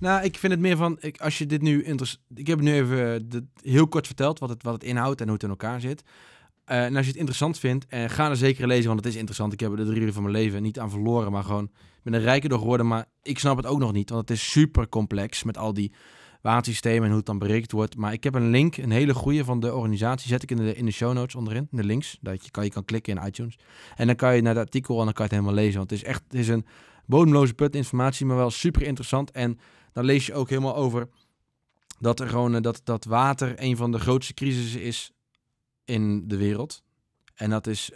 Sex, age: male, 20-39